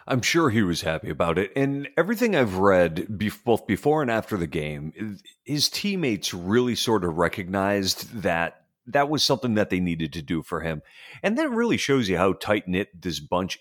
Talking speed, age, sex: 190 wpm, 40-59, male